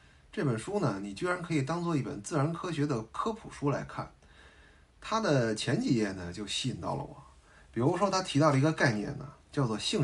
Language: Chinese